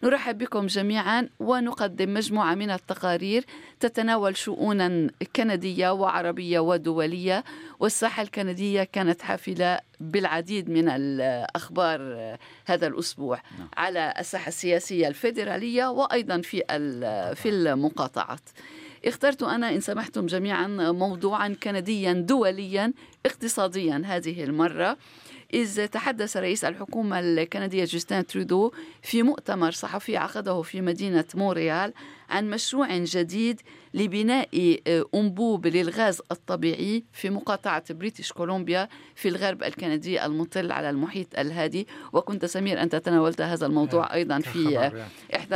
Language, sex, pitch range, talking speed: Arabic, female, 170-210 Hz, 105 wpm